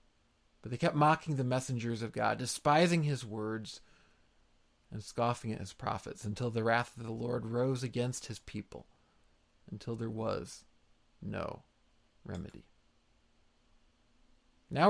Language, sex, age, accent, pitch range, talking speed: English, male, 40-59, American, 120-170 Hz, 130 wpm